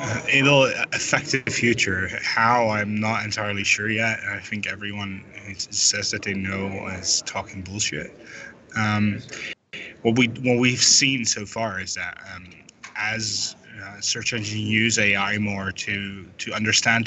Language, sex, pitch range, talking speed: English, male, 105-120 Hz, 150 wpm